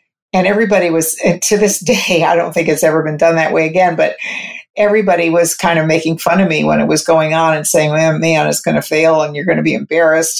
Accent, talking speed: American, 260 wpm